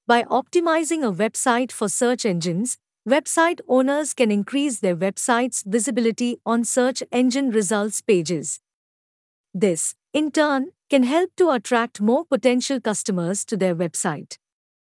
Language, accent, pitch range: English, Indian, 205-270 Hz